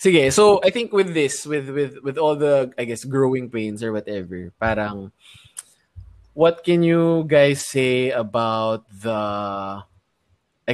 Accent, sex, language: native, male, Filipino